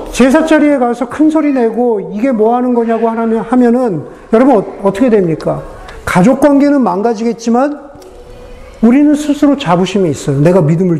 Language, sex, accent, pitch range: Korean, male, native, 170-245 Hz